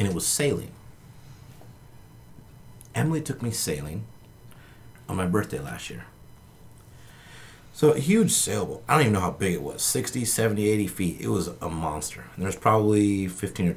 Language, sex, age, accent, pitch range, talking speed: English, male, 30-49, American, 85-115 Hz, 160 wpm